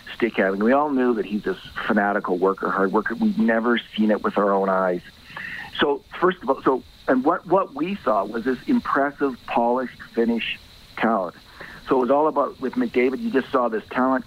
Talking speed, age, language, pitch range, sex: 195 wpm, 50-69, English, 105-135 Hz, male